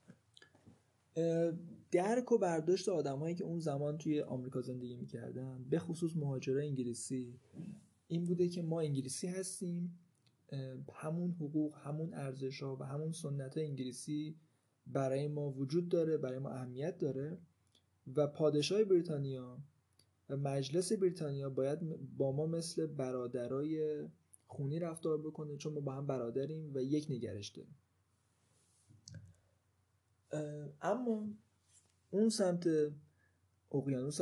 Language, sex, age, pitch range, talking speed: Persian, male, 20-39, 125-160 Hz, 110 wpm